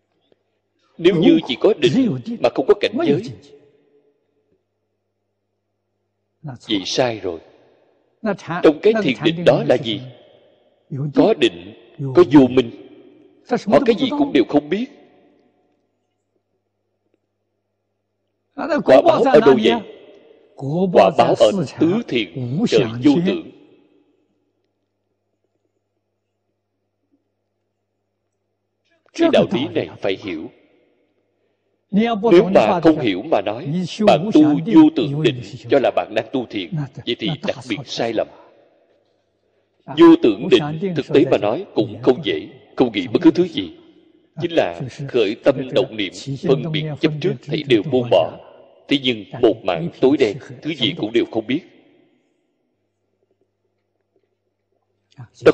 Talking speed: 125 wpm